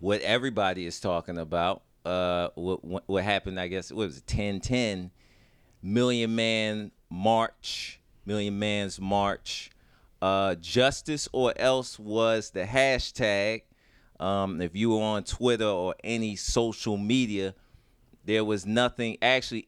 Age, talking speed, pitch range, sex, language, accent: 30-49, 130 wpm, 95-120 Hz, male, English, American